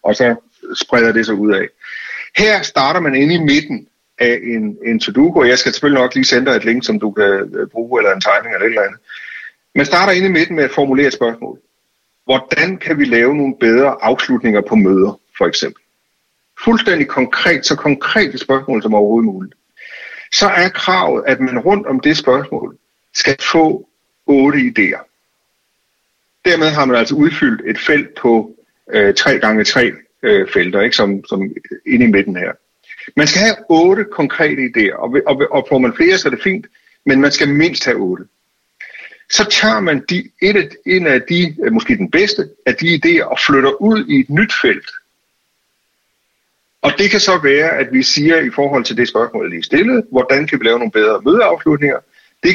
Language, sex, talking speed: Danish, male, 185 wpm